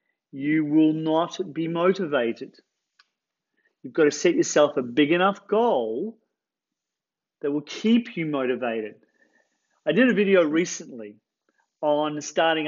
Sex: male